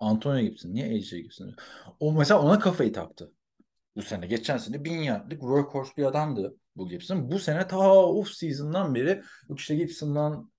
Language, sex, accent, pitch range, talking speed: Turkish, male, native, 110-155 Hz, 165 wpm